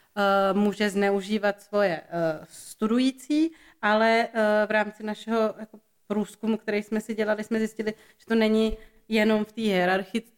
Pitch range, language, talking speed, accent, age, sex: 190-210 Hz, Czech, 125 wpm, native, 30-49, female